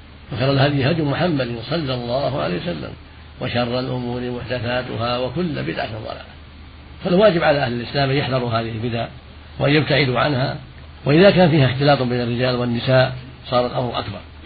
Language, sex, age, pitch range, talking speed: Arabic, male, 50-69, 80-135 Hz, 150 wpm